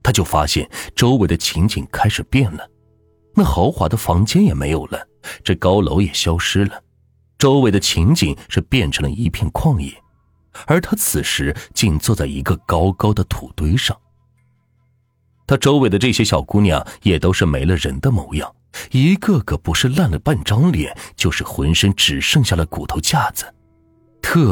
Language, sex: Chinese, male